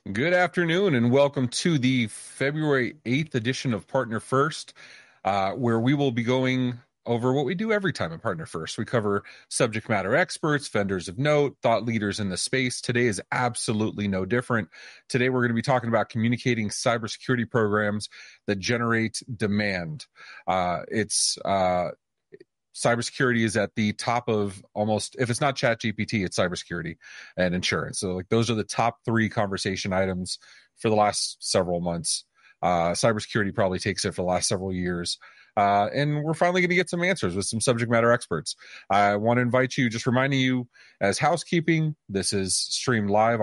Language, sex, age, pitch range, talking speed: English, male, 30-49, 105-130 Hz, 175 wpm